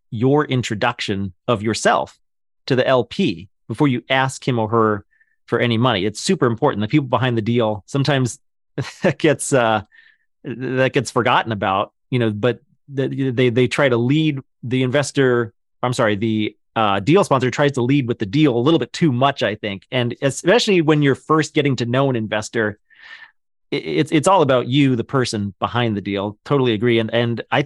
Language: English